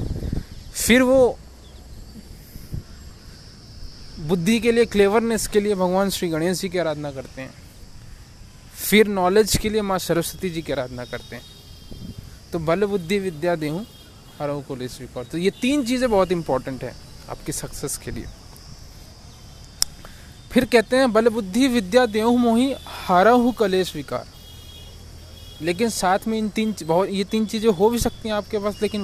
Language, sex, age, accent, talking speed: Hindi, male, 20-39, native, 150 wpm